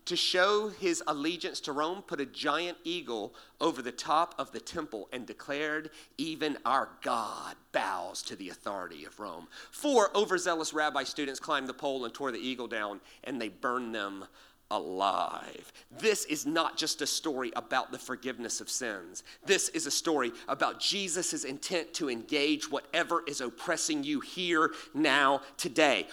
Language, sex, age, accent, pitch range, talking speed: English, male, 40-59, American, 170-280 Hz, 165 wpm